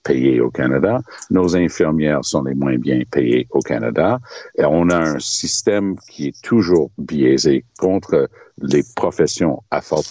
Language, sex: French, male